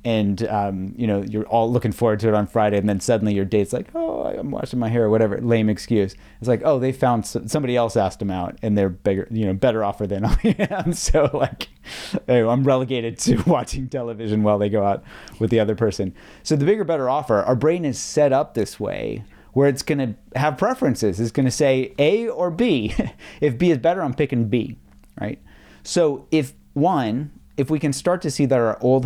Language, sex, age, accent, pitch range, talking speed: English, male, 30-49, American, 100-140 Hz, 225 wpm